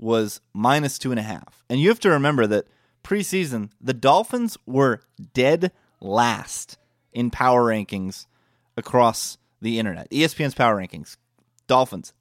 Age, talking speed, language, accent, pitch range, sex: 30-49, 140 wpm, English, American, 115-140 Hz, male